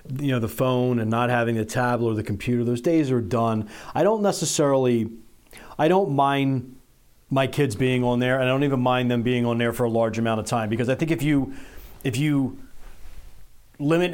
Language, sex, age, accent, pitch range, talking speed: English, male, 40-59, American, 120-135 Hz, 225 wpm